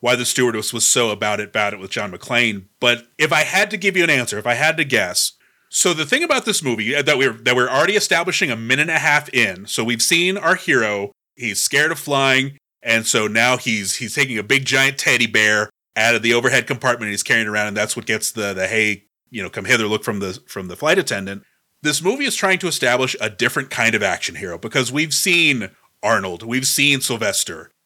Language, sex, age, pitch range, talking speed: English, male, 30-49, 115-185 Hz, 240 wpm